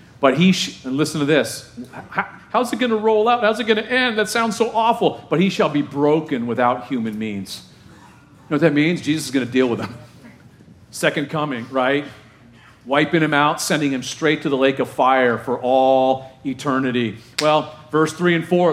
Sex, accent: male, American